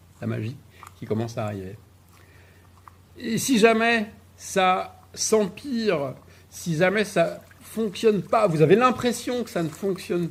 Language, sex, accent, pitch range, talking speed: French, male, French, 130-210 Hz, 135 wpm